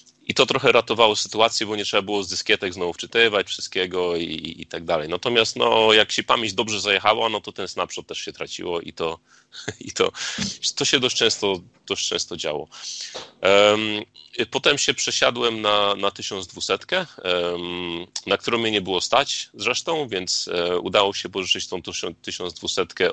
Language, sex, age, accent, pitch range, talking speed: Polish, male, 30-49, native, 95-120 Hz, 165 wpm